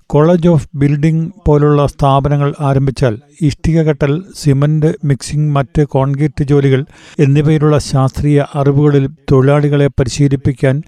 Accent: native